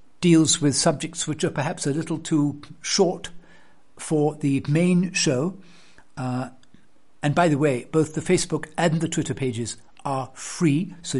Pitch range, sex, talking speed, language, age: 135-175 Hz, male, 155 wpm, English, 60-79